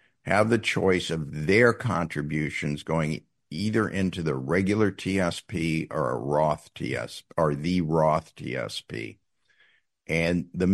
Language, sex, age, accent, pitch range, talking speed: English, male, 60-79, American, 80-100 Hz, 125 wpm